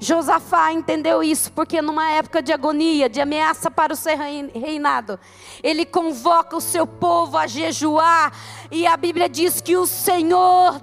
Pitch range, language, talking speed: 290-385 Hz, Portuguese, 155 wpm